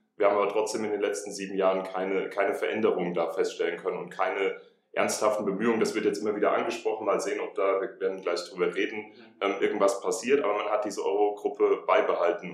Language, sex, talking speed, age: German, male, 200 wpm, 30-49